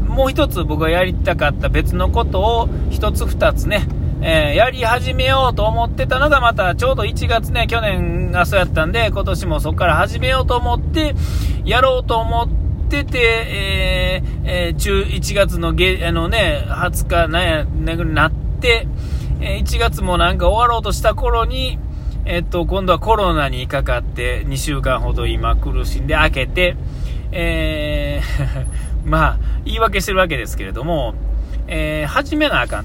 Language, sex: Japanese, male